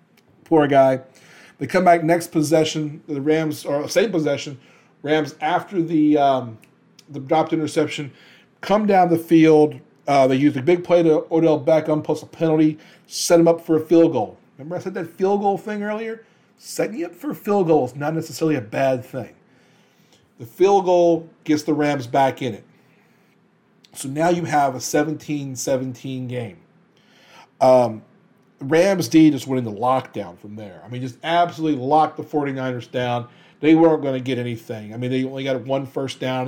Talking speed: 180 wpm